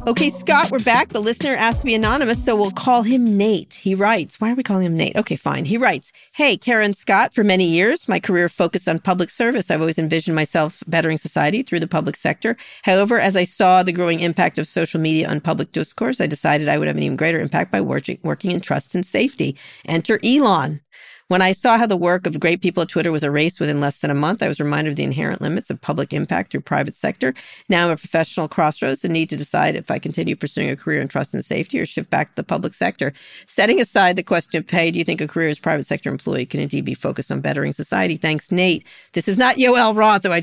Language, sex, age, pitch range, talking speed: English, female, 40-59, 155-210 Hz, 250 wpm